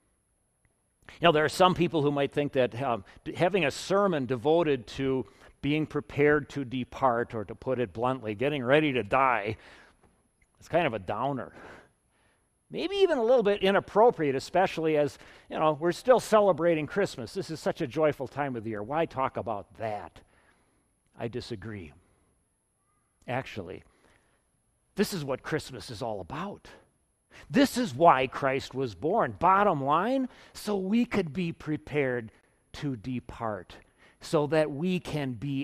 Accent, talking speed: American, 155 wpm